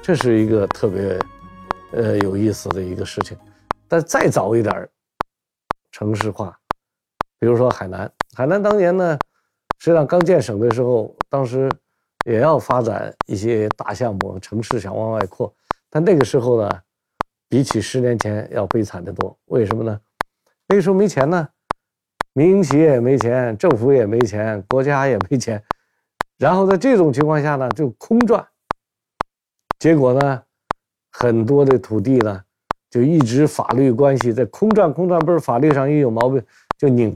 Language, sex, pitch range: Chinese, male, 110-135 Hz